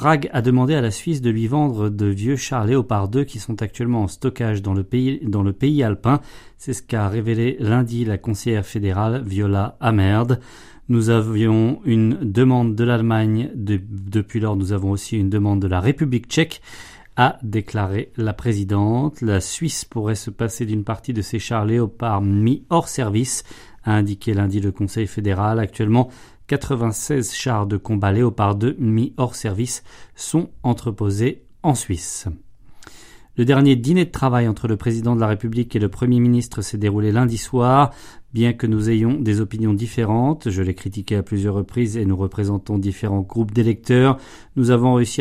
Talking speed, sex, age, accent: 175 wpm, male, 30-49, French